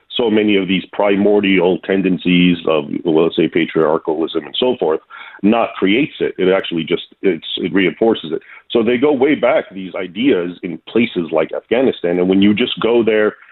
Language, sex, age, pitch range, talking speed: English, male, 40-59, 95-105 Hz, 180 wpm